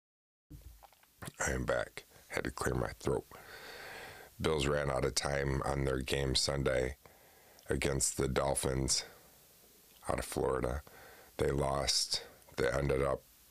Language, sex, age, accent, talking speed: English, male, 50-69, American, 125 wpm